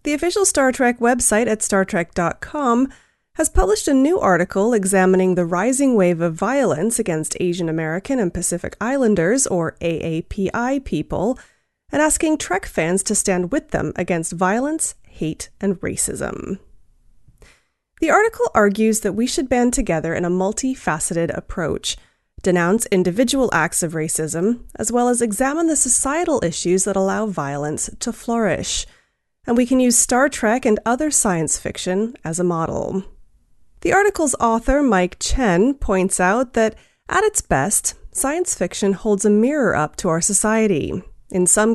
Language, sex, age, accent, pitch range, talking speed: English, female, 30-49, American, 175-260 Hz, 150 wpm